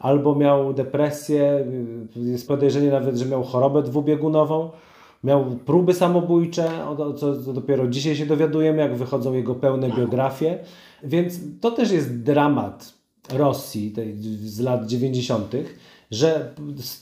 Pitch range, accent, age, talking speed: 140-180 Hz, native, 40-59, 130 wpm